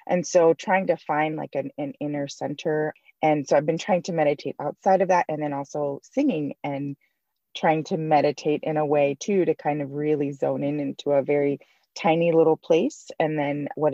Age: 20-39